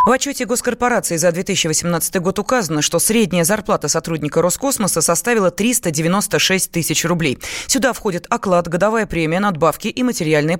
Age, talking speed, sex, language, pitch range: 20-39, 135 wpm, female, Russian, 165-220 Hz